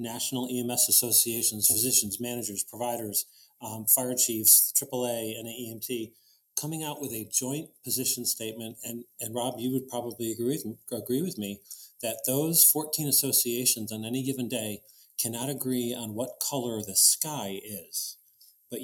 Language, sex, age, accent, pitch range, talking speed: English, male, 40-59, American, 110-130 Hz, 160 wpm